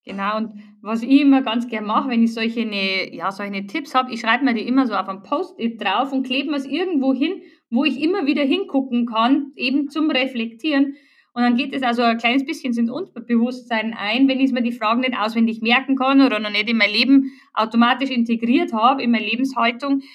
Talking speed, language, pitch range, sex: 215 wpm, German, 235-290 Hz, female